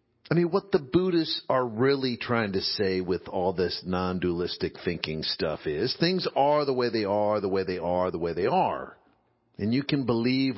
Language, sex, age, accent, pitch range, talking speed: English, male, 50-69, American, 95-125 Hz, 200 wpm